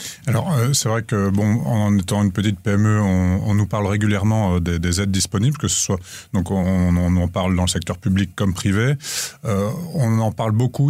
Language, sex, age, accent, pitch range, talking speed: French, male, 30-49, French, 95-115 Hz, 205 wpm